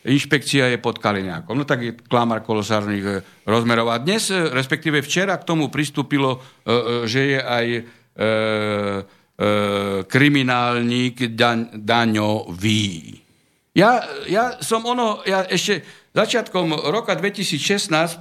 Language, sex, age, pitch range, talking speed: Slovak, male, 60-79, 120-155 Hz, 100 wpm